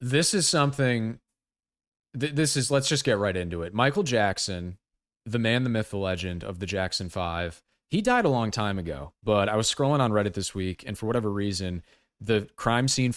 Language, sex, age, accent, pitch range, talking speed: English, male, 30-49, American, 95-130 Hz, 200 wpm